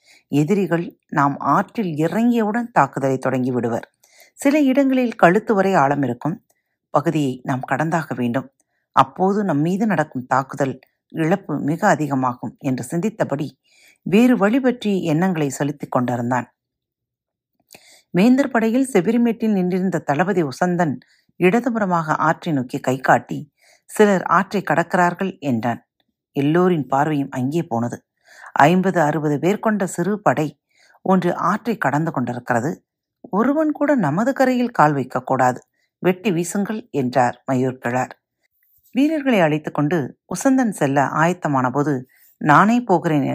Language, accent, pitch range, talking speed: Tamil, native, 135-200 Hz, 110 wpm